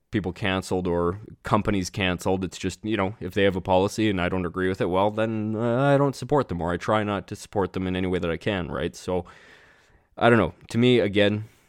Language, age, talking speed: English, 20-39, 245 wpm